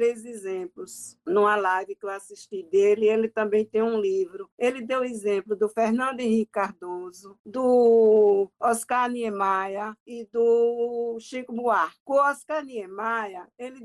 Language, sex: Portuguese, female